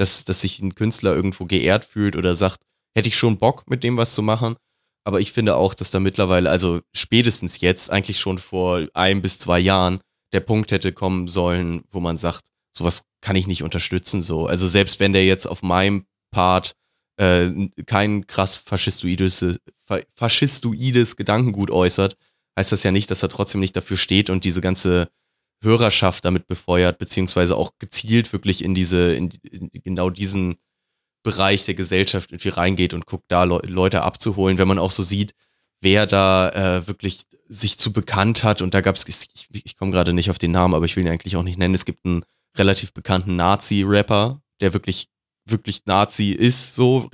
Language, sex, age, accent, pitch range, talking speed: German, male, 20-39, German, 90-105 Hz, 185 wpm